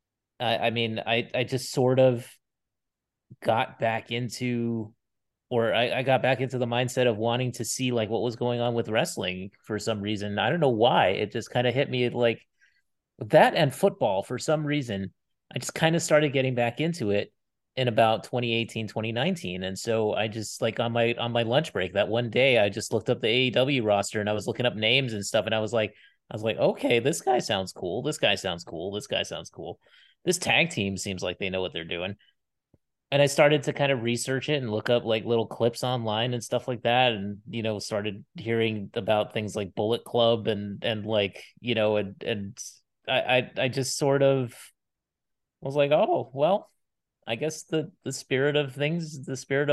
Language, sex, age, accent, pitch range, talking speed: English, male, 30-49, American, 110-135 Hz, 210 wpm